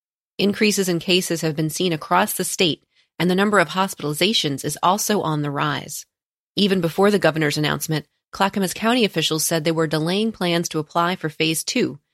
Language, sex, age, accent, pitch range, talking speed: English, female, 30-49, American, 160-190 Hz, 185 wpm